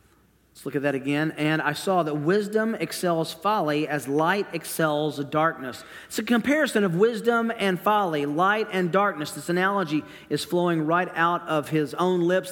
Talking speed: 175 wpm